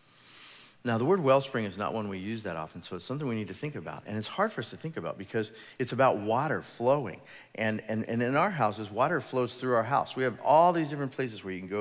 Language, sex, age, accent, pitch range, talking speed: English, male, 40-59, American, 95-130 Hz, 270 wpm